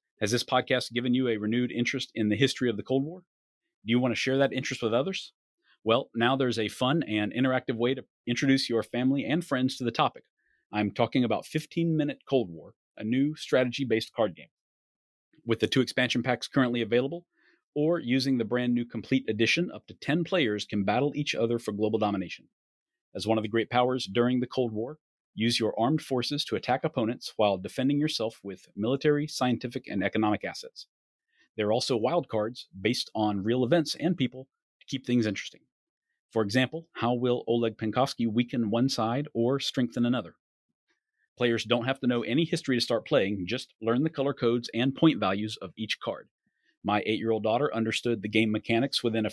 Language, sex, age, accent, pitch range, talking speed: English, male, 40-59, American, 110-135 Hz, 195 wpm